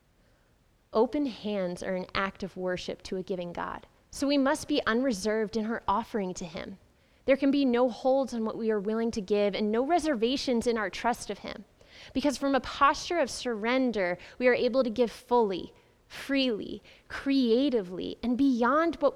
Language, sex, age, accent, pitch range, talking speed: English, female, 20-39, American, 195-245 Hz, 180 wpm